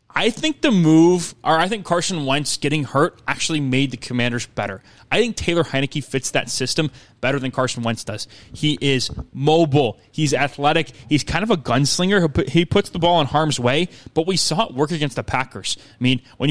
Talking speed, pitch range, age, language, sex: 205 wpm, 125-160 Hz, 20-39, English, male